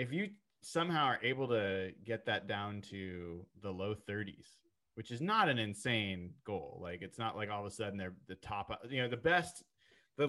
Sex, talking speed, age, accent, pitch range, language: male, 205 wpm, 30-49, American, 100-130 Hz, English